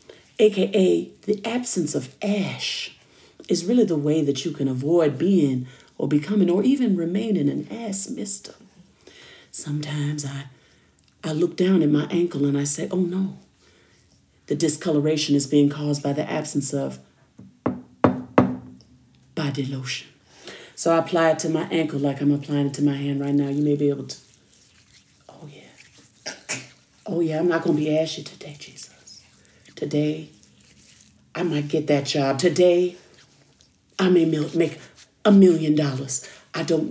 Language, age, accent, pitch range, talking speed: English, 40-59, American, 140-170 Hz, 155 wpm